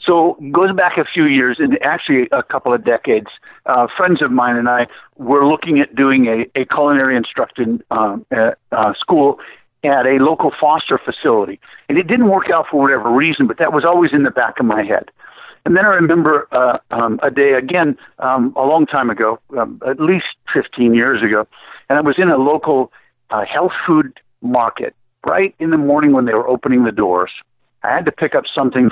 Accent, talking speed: American, 205 wpm